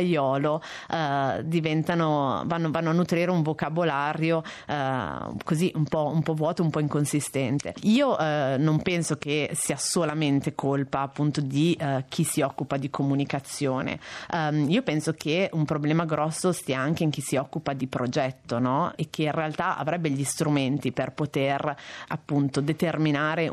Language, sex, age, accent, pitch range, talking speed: Italian, female, 30-49, native, 140-165 Hz, 155 wpm